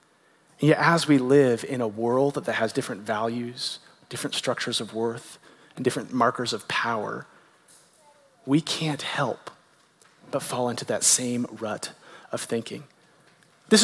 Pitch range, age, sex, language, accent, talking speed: 135-210 Hz, 30-49, male, English, American, 145 wpm